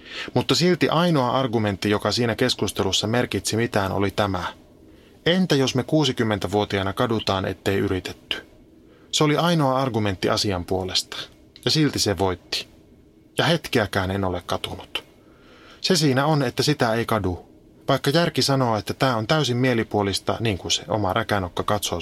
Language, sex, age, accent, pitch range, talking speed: Finnish, male, 20-39, native, 100-135 Hz, 145 wpm